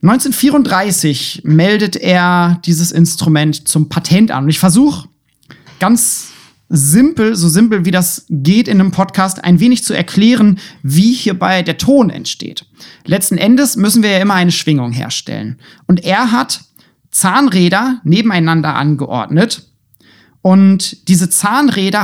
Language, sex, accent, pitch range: German, male, German, 155-210 Hz